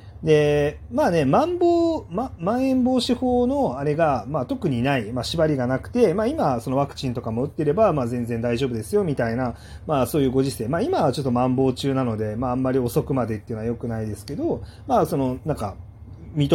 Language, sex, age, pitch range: Japanese, male, 30-49, 115-190 Hz